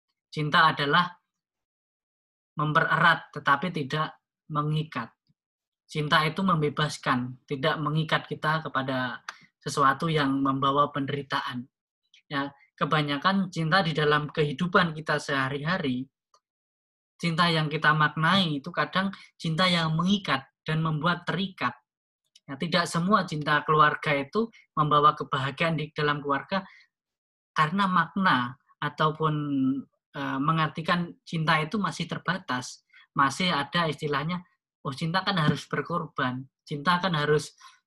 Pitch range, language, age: 145-170 Hz, Indonesian, 20-39